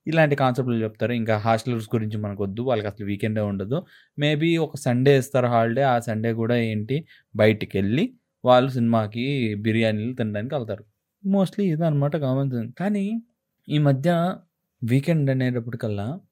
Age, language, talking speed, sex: 20-39, Telugu, 130 wpm, male